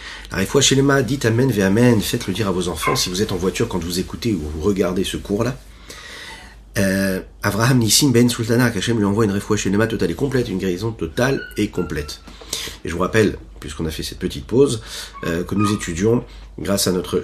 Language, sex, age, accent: French, male, 40-59, French